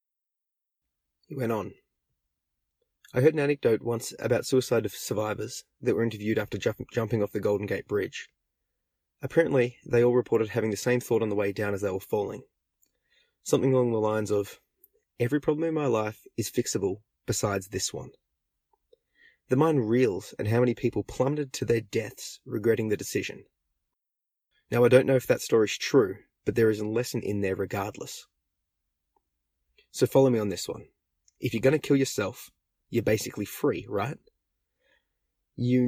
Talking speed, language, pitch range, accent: 170 wpm, English, 105-130 Hz, Australian